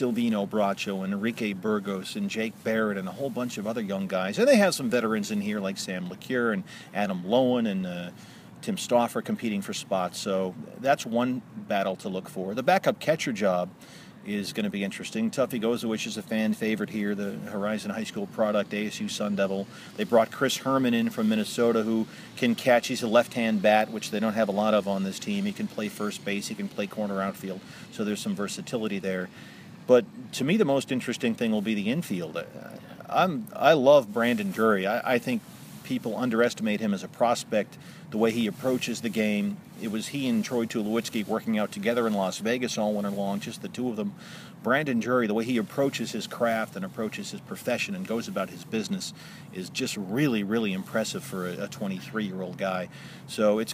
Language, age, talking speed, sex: English, 40-59, 205 wpm, male